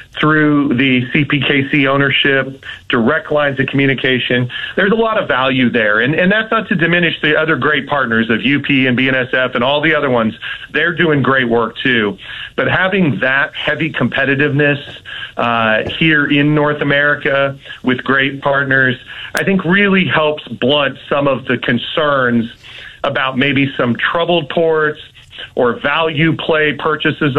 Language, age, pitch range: English, 40-59, 125-155 Hz